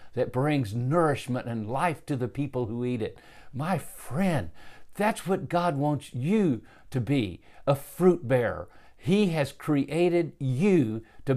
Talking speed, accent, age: 150 wpm, American, 60-79